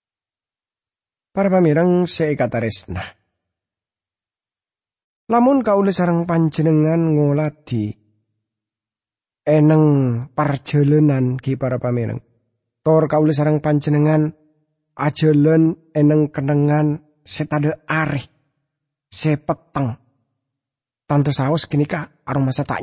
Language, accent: English, Indonesian